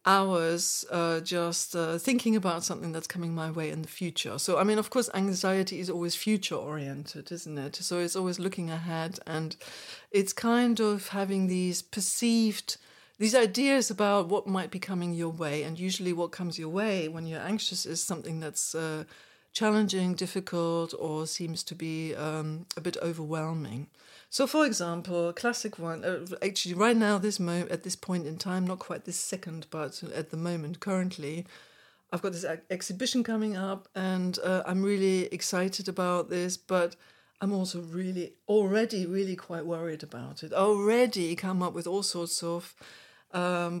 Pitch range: 165-195 Hz